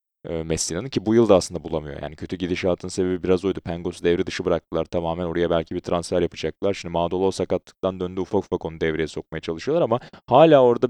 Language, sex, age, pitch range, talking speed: Turkish, male, 30-49, 85-110 Hz, 185 wpm